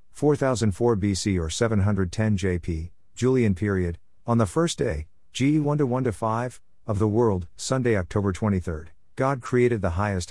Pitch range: 90-115 Hz